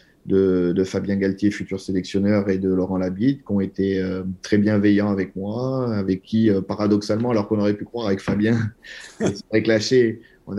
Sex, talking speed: male, 175 wpm